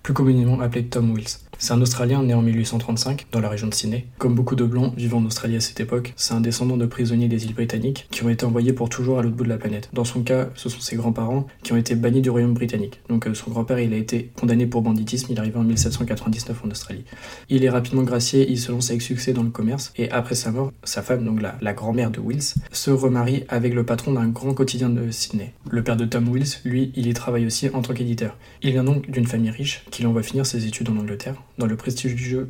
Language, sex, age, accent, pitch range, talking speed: French, male, 20-39, French, 115-130 Hz, 260 wpm